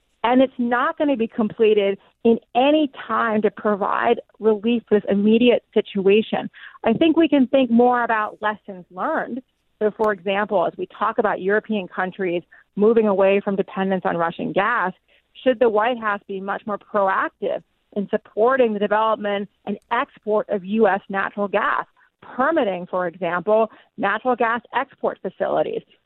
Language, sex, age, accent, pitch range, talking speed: English, female, 40-59, American, 200-240 Hz, 155 wpm